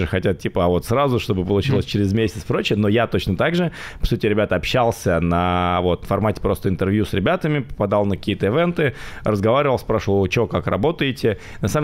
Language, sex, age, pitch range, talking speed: Russian, male, 20-39, 100-130 Hz, 190 wpm